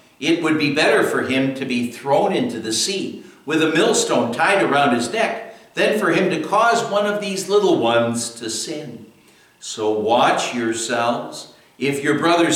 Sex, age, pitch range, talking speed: male, 60-79, 115-160 Hz, 175 wpm